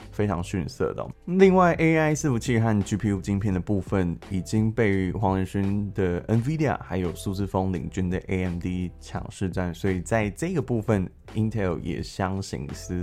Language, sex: Chinese, male